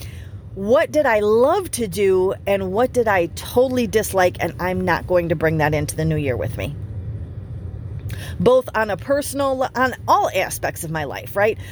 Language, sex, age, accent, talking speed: English, female, 30-49, American, 185 wpm